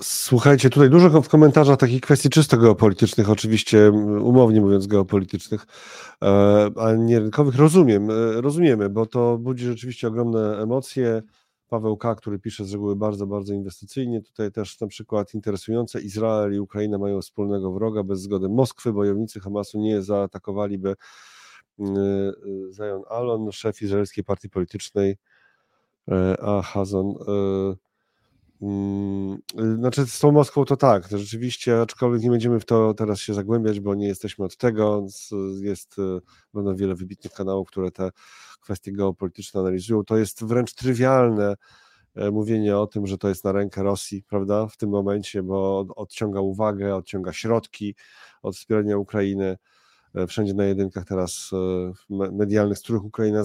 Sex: male